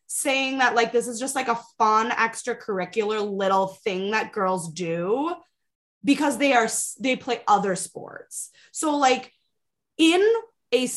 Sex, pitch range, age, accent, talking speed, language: female, 225-315 Hz, 20-39, American, 140 wpm, English